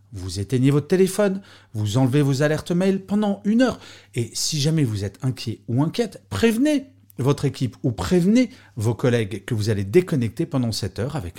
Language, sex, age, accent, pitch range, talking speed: French, male, 40-59, French, 105-165 Hz, 185 wpm